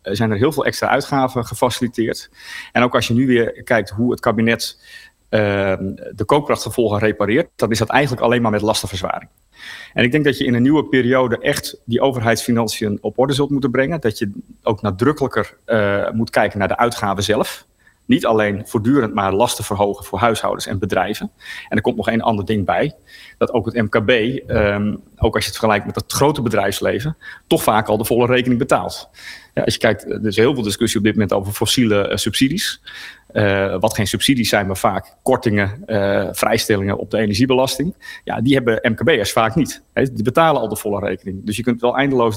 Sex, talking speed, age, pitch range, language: male, 200 wpm, 40-59, 105-125 Hz, Dutch